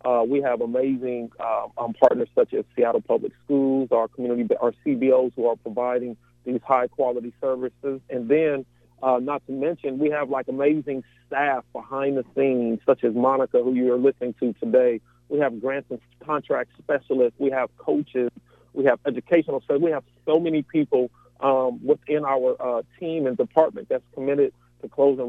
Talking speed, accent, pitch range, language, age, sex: 175 wpm, American, 125-150 Hz, English, 40-59, male